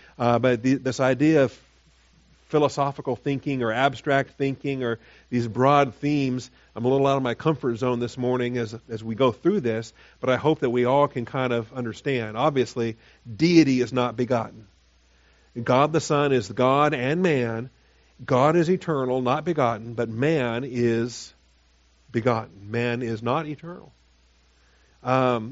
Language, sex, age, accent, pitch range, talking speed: English, male, 50-69, American, 115-140 Hz, 160 wpm